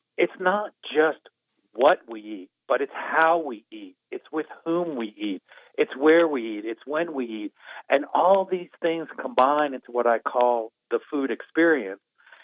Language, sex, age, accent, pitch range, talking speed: English, male, 50-69, American, 120-160 Hz, 175 wpm